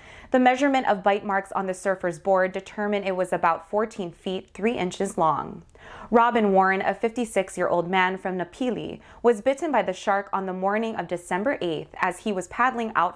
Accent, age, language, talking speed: American, 20-39, English, 195 wpm